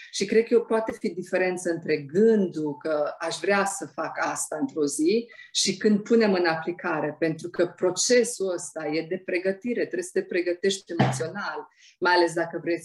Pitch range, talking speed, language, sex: 160-210 Hz, 175 wpm, Romanian, female